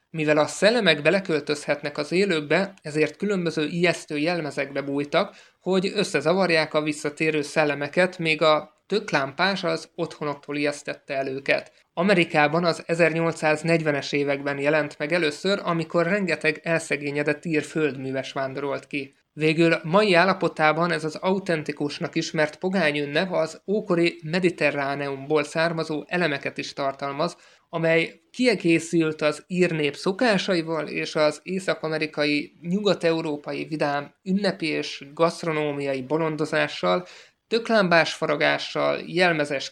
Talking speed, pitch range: 105 wpm, 150-170 Hz